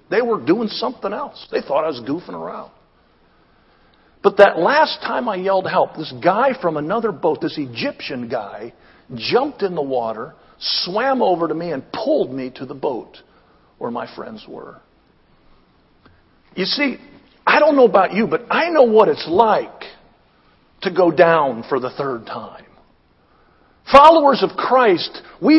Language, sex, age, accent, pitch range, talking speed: English, male, 50-69, American, 200-275 Hz, 160 wpm